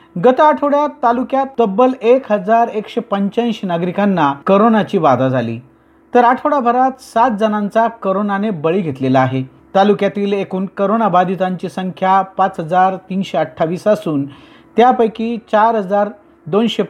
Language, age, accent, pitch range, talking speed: Marathi, 40-59, native, 180-235 Hz, 130 wpm